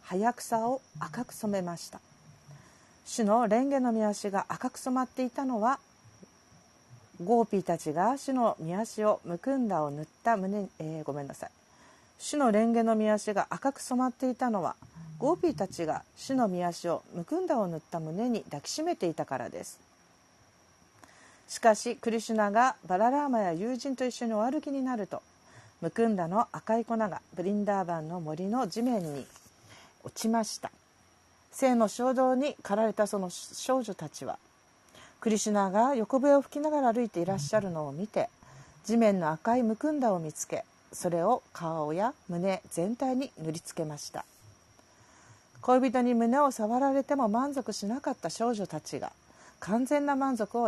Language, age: Japanese, 40-59